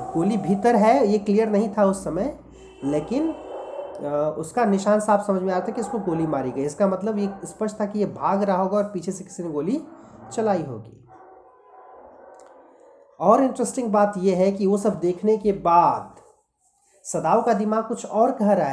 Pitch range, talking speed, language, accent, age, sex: 180-225 Hz, 180 wpm, Hindi, native, 30-49, male